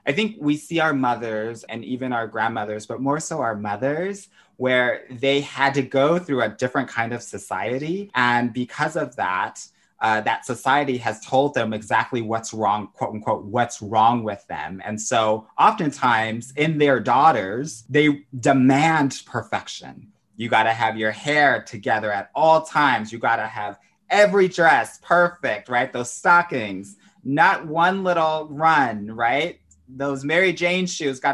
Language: English